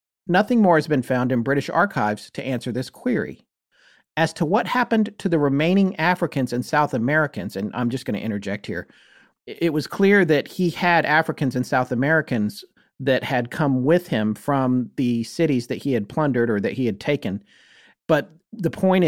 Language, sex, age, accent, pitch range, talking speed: English, male, 40-59, American, 130-175 Hz, 190 wpm